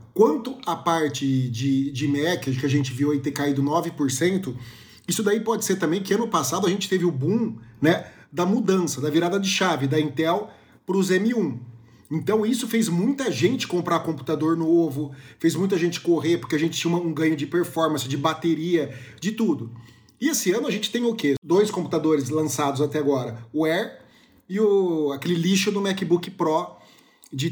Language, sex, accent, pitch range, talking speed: Portuguese, male, Brazilian, 145-185 Hz, 190 wpm